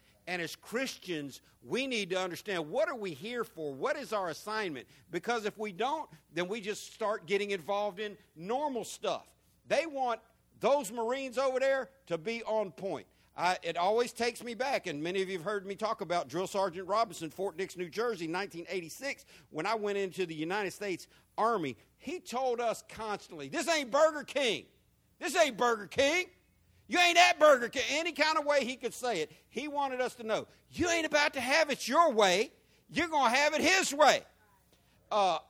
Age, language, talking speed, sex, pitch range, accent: 50-69, English, 195 wpm, male, 180-255 Hz, American